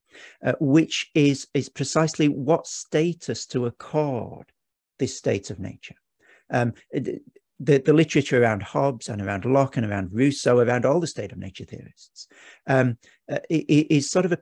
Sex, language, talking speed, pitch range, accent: male, English, 160 wpm, 115-145 Hz, British